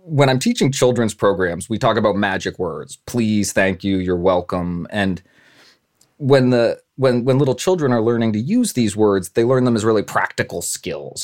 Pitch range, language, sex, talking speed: 100-130 Hz, English, male, 185 wpm